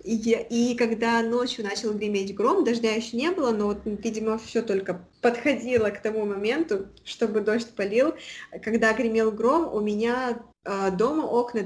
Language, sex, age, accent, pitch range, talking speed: Russian, female, 20-39, native, 195-235 Hz, 160 wpm